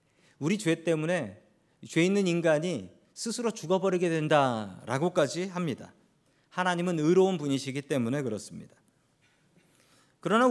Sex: male